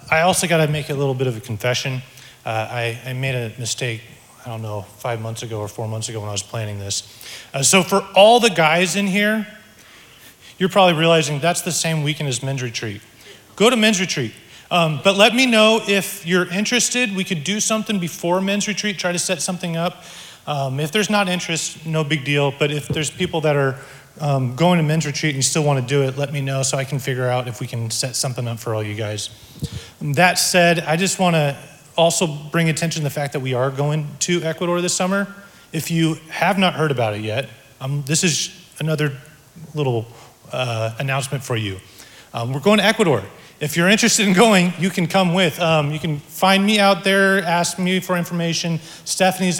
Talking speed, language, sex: 220 wpm, English, male